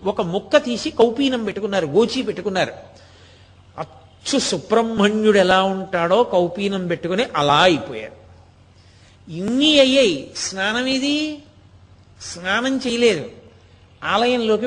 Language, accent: Telugu, native